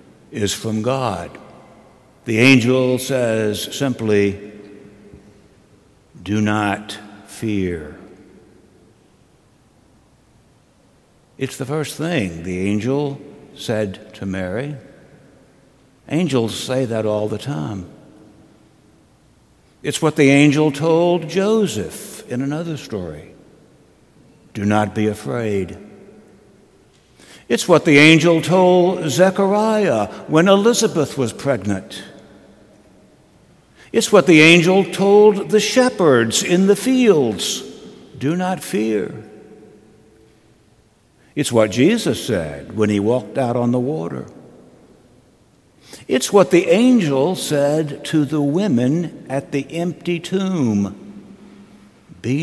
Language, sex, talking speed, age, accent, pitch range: English, male, 95 wpm, 60-79, American, 110-170 Hz